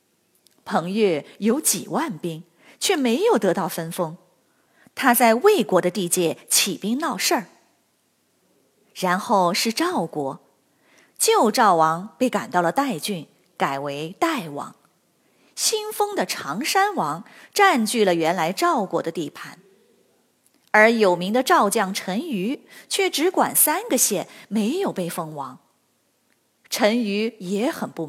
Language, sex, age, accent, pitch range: Chinese, female, 30-49, native, 185-315 Hz